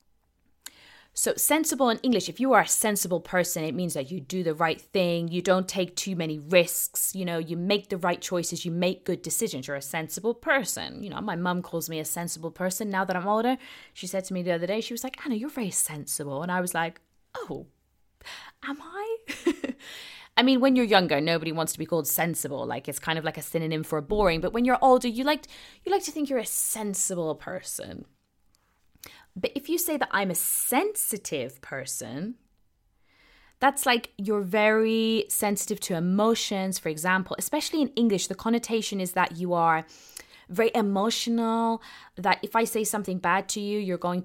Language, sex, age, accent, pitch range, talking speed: English, female, 20-39, British, 170-225 Hz, 195 wpm